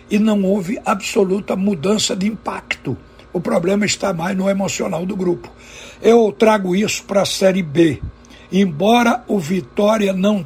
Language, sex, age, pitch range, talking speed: Portuguese, male, 60-79, 175-210 Hz, 150 wpm